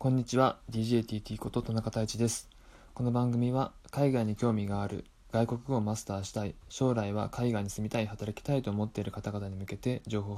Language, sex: Japanese, male